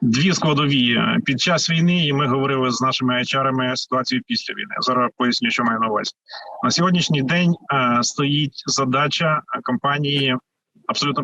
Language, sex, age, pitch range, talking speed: Ukrainian, male, 30-49, 130-165 Hz, 150 wpm